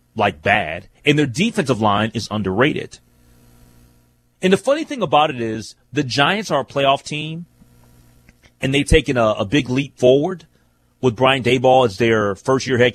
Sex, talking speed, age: male, 165 wpm, 30-49